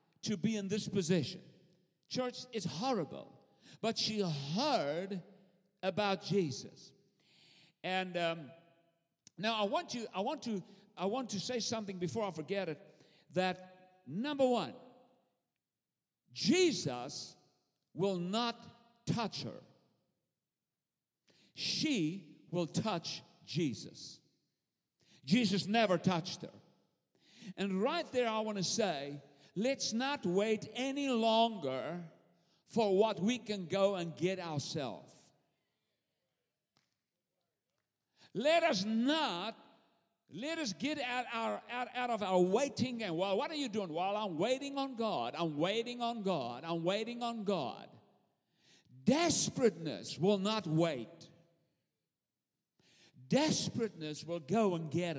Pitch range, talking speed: 170-235 Hz, 115 wpm